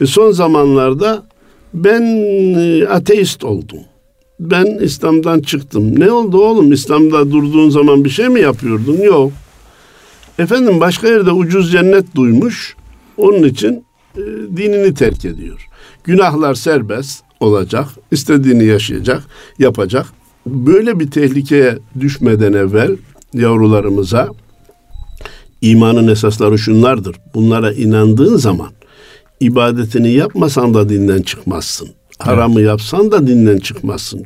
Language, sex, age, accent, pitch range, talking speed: Turkish, male, 60-79, native, 110-155 Hz, 105 wpm